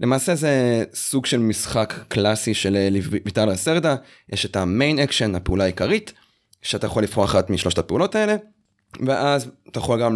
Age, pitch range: 20-39, 100-130 Hz